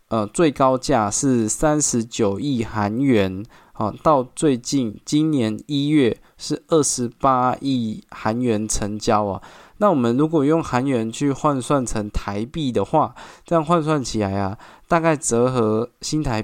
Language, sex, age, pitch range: Chinese, male, 20-39, 110-145 Hz